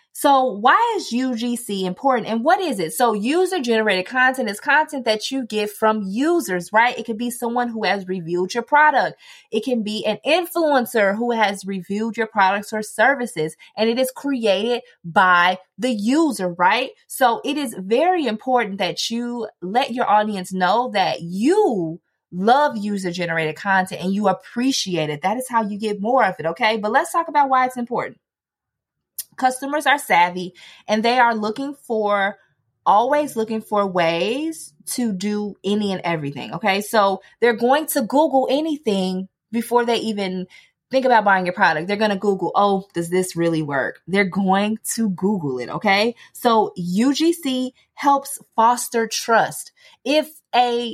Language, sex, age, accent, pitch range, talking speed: English, female, 20-39, American, 190-255 Hz, 165 wpm